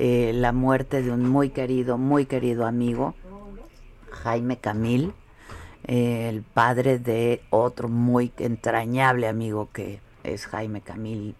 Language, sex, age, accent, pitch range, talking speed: Spanish, female, 50-69, Mexican, 115-130 Hz, 125 wpm